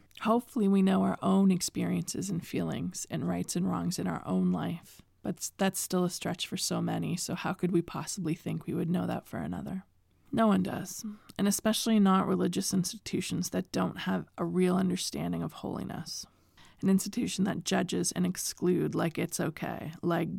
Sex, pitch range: female, 155-195 Hz